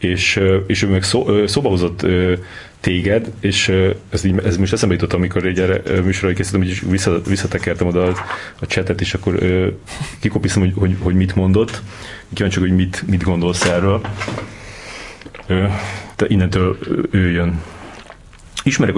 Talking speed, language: 145 wpm, Hungarian